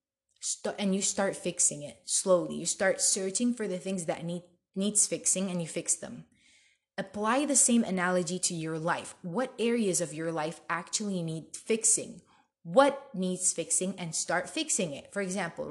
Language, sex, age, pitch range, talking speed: English, female, 20-39, 170-225 Hz, 170 wpm